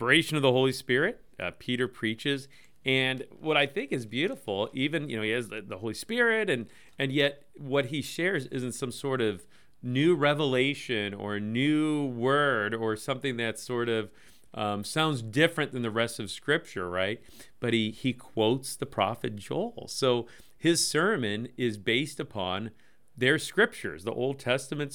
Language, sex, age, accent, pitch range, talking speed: English, male, 40-59, American, 115-145 Hz, 170 wpm